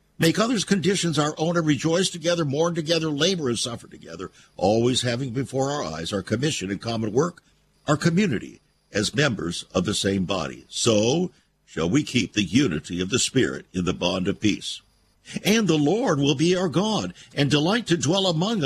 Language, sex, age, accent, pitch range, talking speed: English, male, 60-79, American, 110-170 Hz, 185 wpm